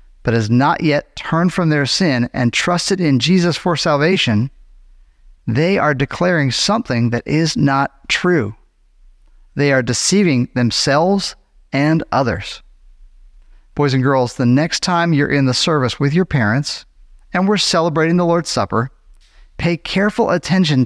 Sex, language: male, English